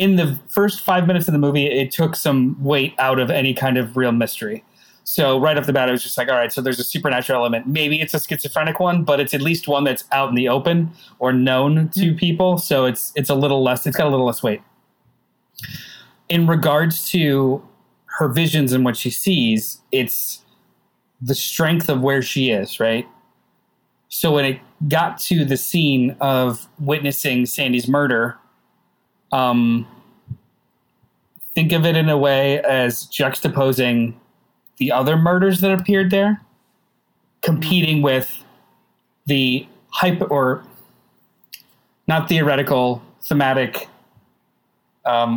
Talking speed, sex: 155 wpm, male